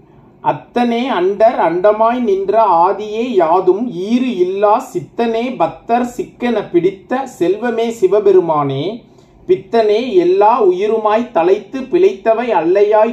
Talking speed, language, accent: 90 wpm, Tamil, native